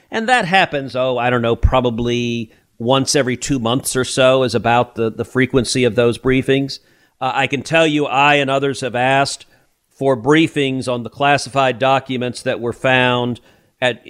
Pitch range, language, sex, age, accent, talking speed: 125-145 Hz, English, male, 50-69, American, 180 wpm